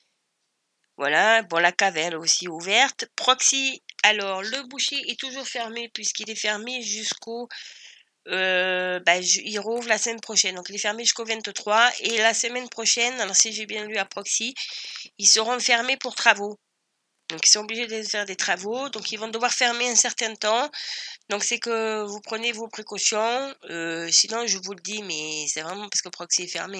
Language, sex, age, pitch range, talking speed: French, female, 30-49, 195-230 Hz, 190 wpm